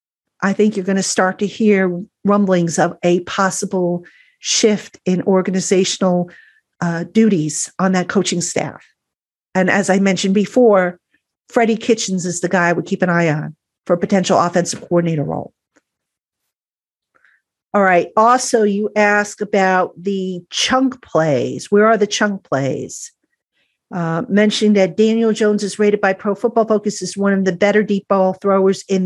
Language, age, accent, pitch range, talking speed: English, 50-69, American, 185-225 Hz, 160 wpm